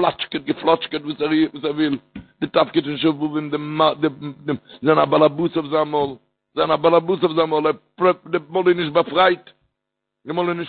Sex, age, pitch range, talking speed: male, 60-79, 145-175 Hz, 140 wpm